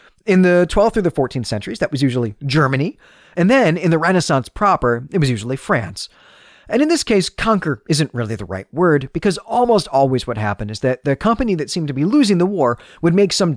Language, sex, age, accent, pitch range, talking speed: English, male, 40-59, American, 120-190 Hz, 220 wpm